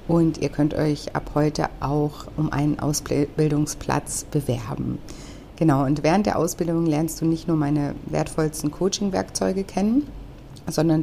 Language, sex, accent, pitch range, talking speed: German, female, German, 145-160 Hz, 135 wpm